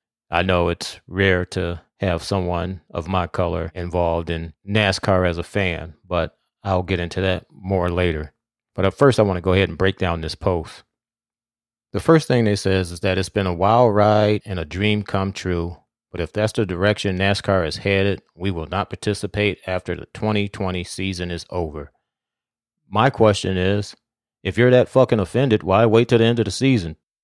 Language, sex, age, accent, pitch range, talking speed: English, male, 30-49, American, 95-115 Hz, 190 wpm